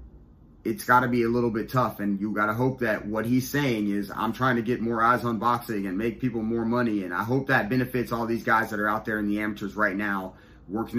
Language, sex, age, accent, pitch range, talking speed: English, male, 30-49, American, 95-120 Hz, 270 wpm